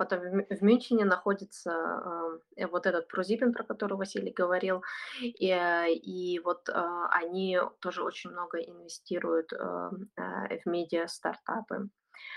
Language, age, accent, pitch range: Russian, 20-39, native, 180-210 Hz